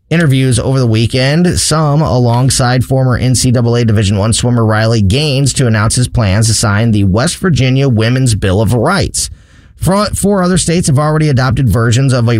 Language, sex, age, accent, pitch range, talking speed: English, male, 30-49, American, 105-135 Hz, 170 wpm